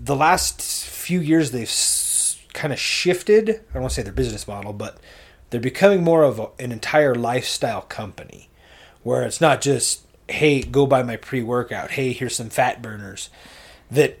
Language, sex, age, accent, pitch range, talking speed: English, male, 30-49, American, 100-140 Hz, 170 wpm